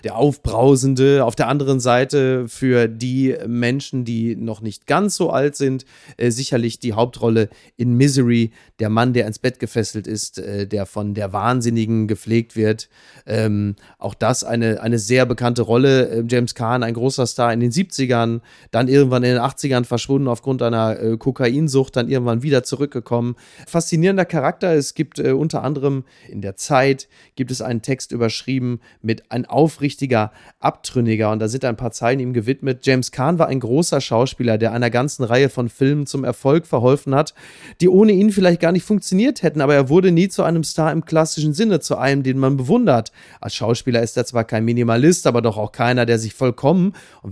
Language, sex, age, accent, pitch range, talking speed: German, male, 30-49, German, 115-145 Hz, 190 wpm